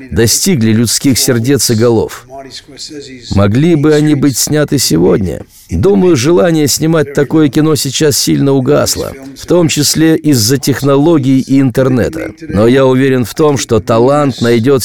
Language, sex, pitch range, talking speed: Russian, male, 110-150 Hz, 135 wpm